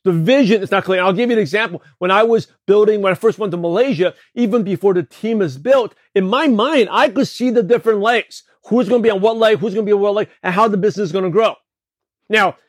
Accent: American